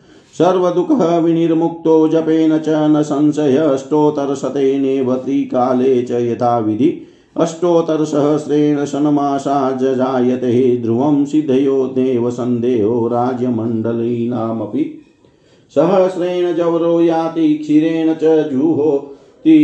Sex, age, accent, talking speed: male, 50-69, native, 70 wpm